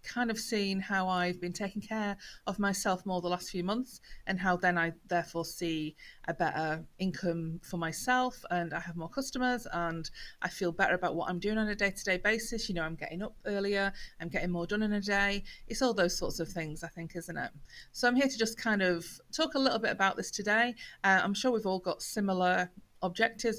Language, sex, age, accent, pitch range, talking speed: English, female, 30-49, British, 175-205 Hz, 225 wpm